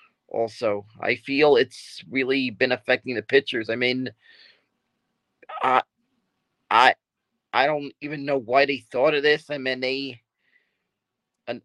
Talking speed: 135 wpm